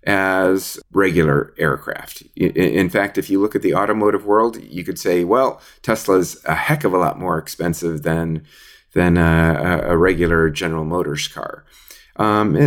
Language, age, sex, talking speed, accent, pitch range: English, 30-49, male, 160 wpm, American, 80-100 Hz